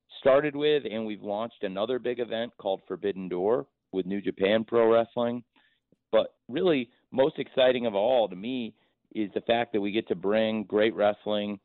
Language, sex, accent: English, male, American